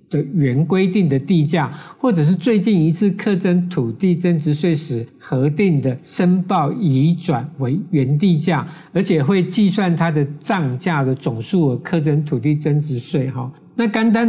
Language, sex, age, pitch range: Chinese, male, 50-69, 140-185 Hz